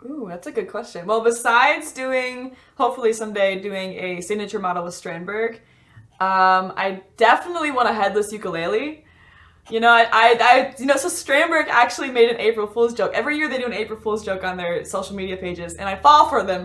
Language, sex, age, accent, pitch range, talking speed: English, female, 10-29, American, 200-285 Hz, 200 wpm